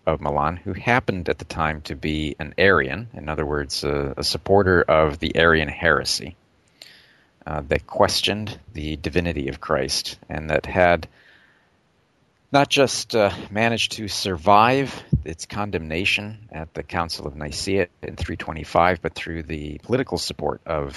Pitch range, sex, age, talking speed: 80-105 Hz, male, 40-59, 150 wpm